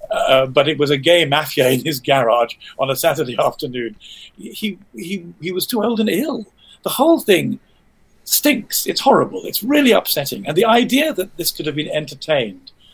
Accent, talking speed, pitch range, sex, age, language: British, 185 wpm, 135-195 Hz, male, 50-69, English